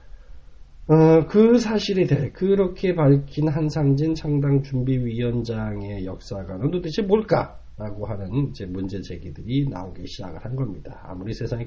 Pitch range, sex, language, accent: 100-155 Hz, male, Korean, native